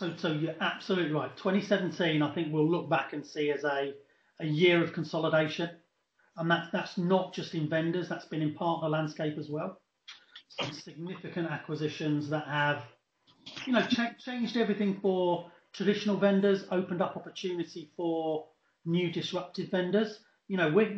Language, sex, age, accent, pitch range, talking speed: English, male, 40-59, British, 155-185 Hz, 165 wpm